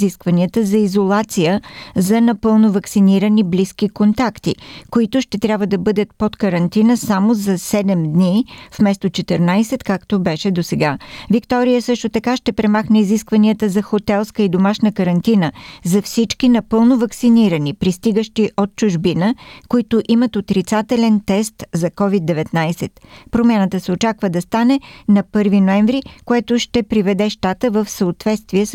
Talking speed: 130 wpm